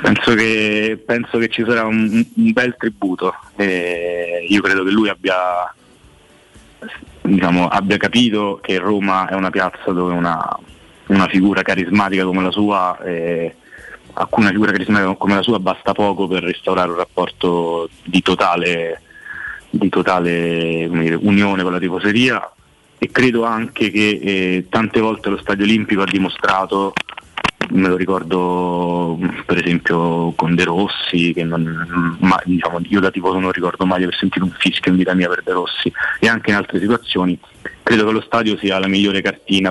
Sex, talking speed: male, 160 wpm